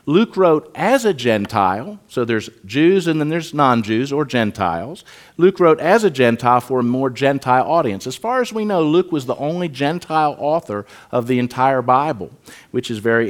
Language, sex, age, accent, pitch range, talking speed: English, male, 50-69, American, 120-170 Hz, 190 wpm